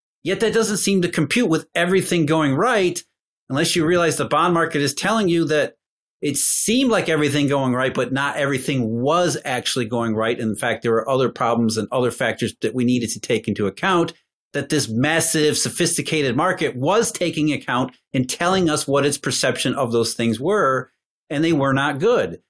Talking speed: 190 wpm